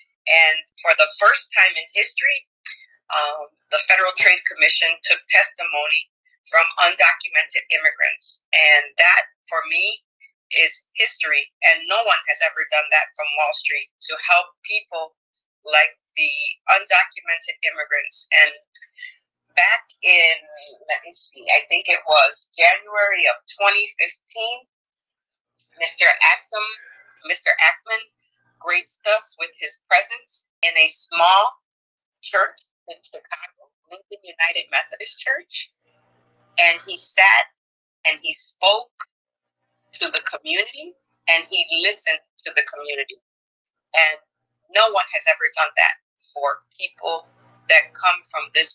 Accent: American